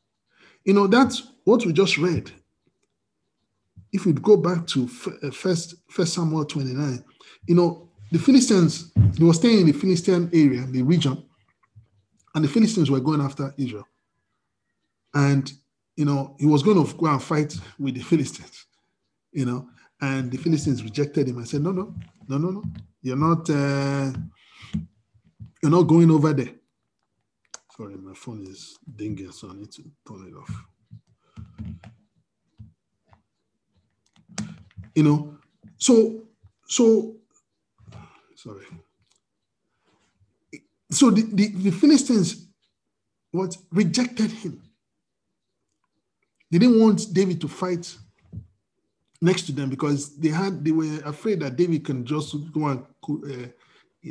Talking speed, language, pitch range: 130 wpm, English, 135-185 Hz